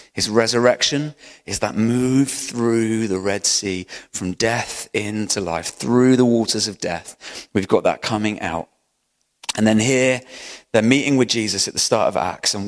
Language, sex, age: English, male, 30-49